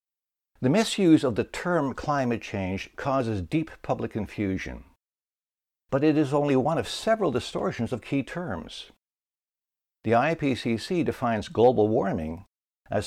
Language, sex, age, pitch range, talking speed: English, male, 60-79, 100-140 Hz, 130 wpm